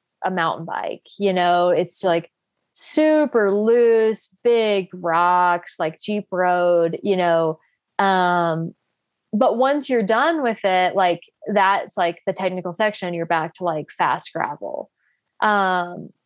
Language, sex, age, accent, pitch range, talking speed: English, female, 20-39, American, 180-235 Hz, 135 wpm